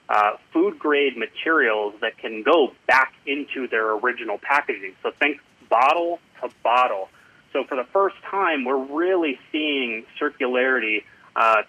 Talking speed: 135 wpm